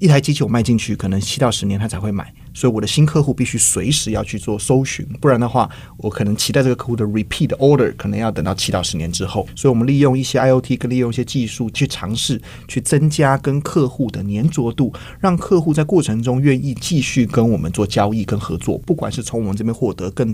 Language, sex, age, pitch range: Chinese, male, 30-49, 110-135 Hz